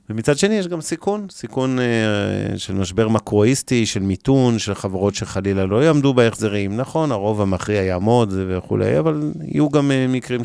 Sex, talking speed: male, 160 wpm